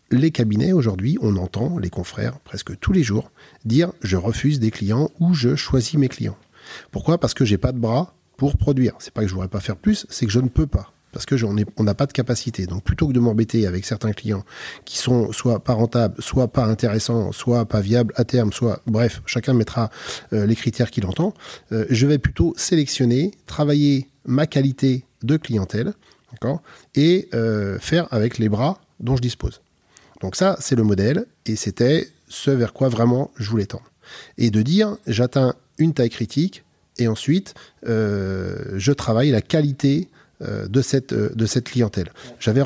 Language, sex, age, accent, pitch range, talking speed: French, male, 40-59, French, 110-140 Hz, 200 wpm